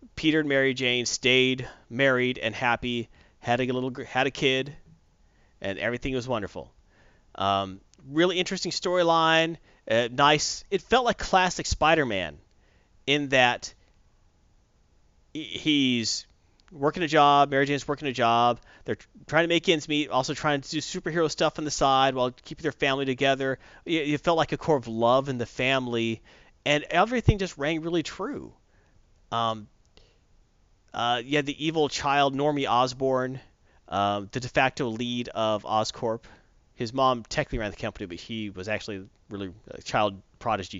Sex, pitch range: male, 115-150 Hz